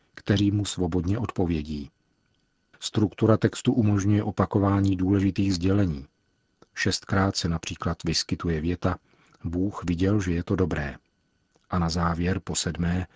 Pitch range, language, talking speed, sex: 85-100 Hz, Czech, 120 wpm, male